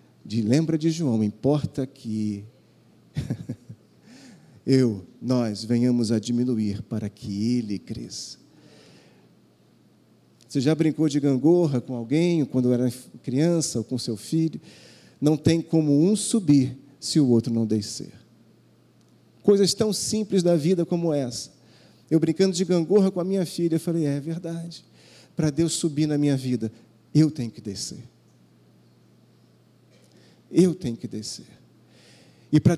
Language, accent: Portuguese, Brazilian